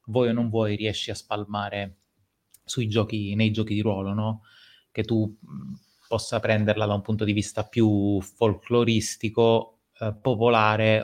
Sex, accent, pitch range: male, native, 105-125 Hz